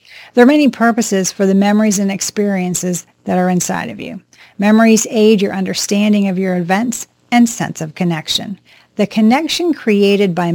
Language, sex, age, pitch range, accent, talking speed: English, female, 40-59, 185-230 Hz, American, 165 wpm